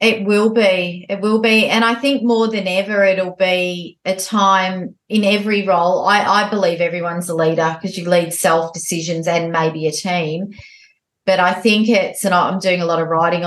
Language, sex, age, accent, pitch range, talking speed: English, female, 30-49, Australian, 175-210 Hz, 200 wpm